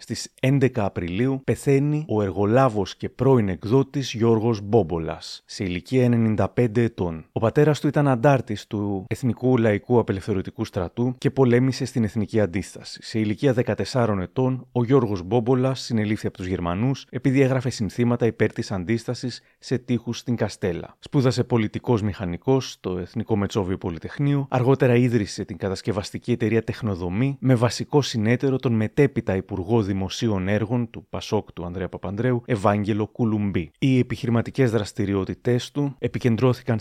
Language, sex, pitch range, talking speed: Greek, male, 105-130 Hz, 135 wpm